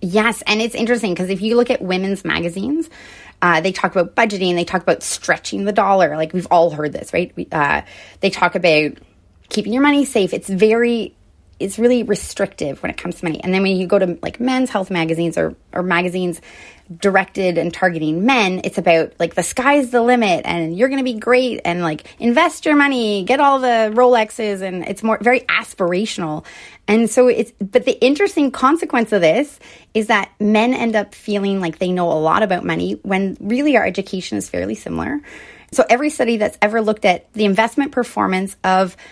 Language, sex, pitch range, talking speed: English, female, 180-240 Hz, 200 wpm